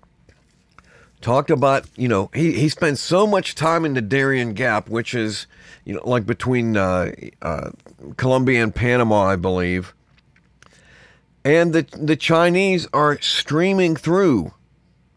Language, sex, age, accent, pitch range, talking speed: English, male, 50-69, American, 115-155 Hz, 135 wpm